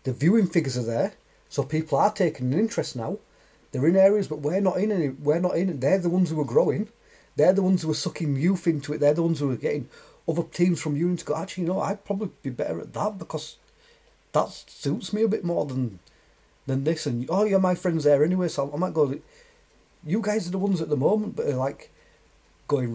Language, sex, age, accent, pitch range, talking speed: English, male, 30-49, British, 140-175 Hz, 240 wpm